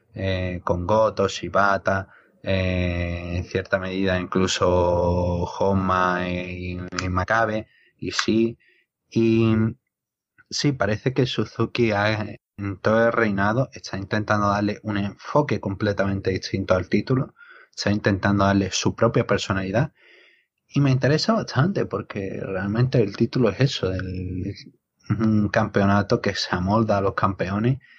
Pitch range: 95-115 Hz